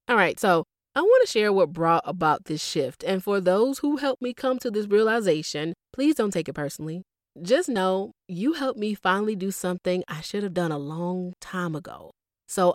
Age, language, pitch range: 30-49, English, 155-210 Hz